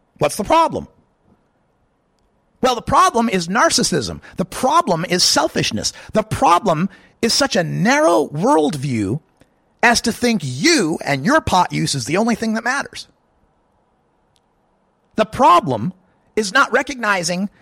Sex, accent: male, American